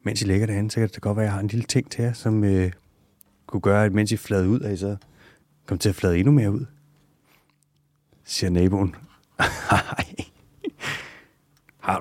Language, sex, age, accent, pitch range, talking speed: Danish, male, 30-49, native, 90-110 Hz, 205 wpm